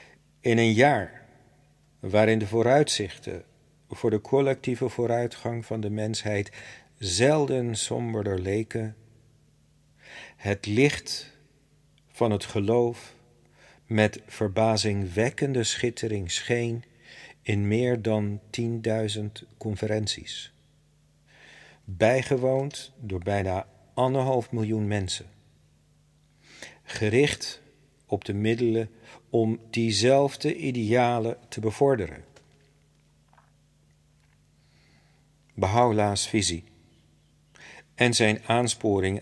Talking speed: 75 wpm